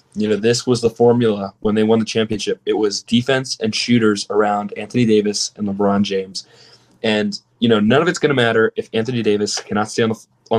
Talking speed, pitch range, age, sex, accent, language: 215 wpm, 105-125 Hz, 20-39, male, American, English